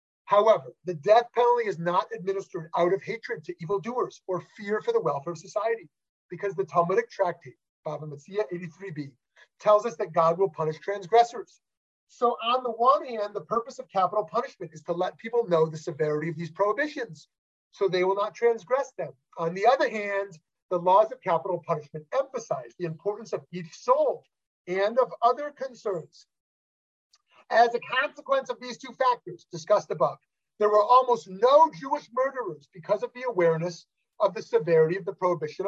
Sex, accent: male, American